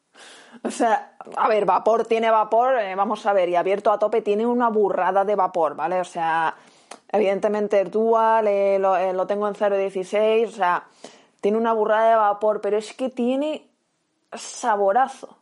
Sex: female